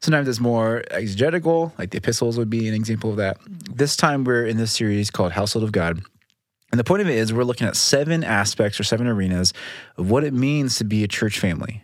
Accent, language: American, English